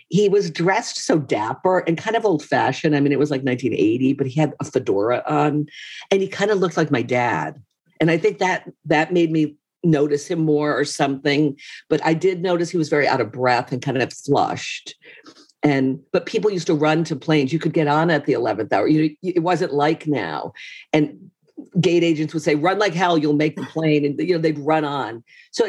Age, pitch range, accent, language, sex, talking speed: 50-69, 135-175 Hz, American, English, female, 225 wpm